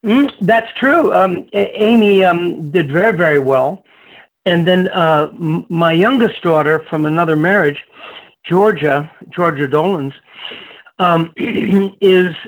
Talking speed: 125 wpm